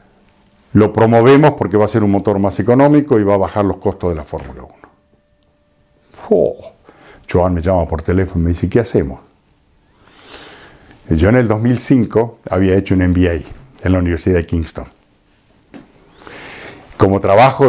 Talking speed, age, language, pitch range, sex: 155 wpm, 50-69, Spanish, 90-115 Hz, male